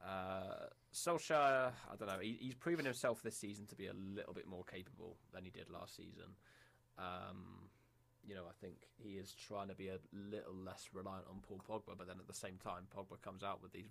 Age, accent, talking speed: 20-39, British, 215 wpm